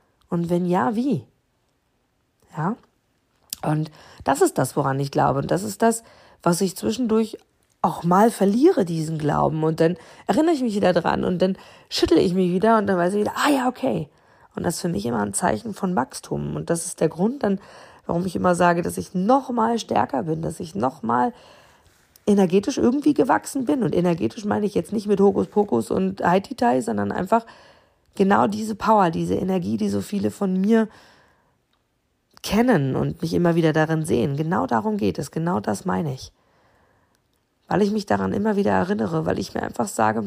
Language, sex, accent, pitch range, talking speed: German, female, German, 160-220 Hz, 190 wpm